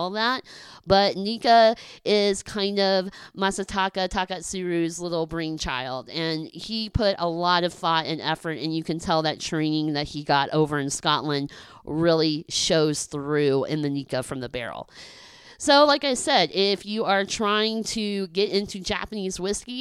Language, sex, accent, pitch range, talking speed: English, female, American, 165-205 Hz, 160 wpm